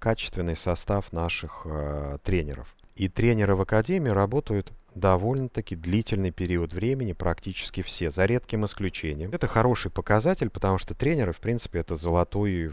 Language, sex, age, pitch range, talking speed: Russian, male, 30-49, 90-115 Hz, 140 wpm